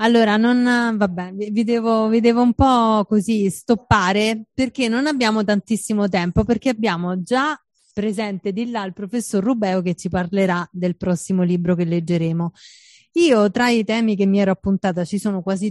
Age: 30-49